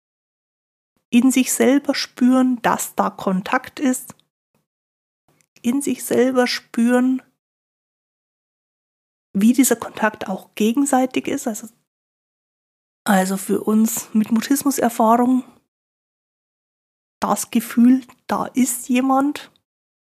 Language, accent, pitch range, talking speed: German, German, 215-260 Hz, 85 wpm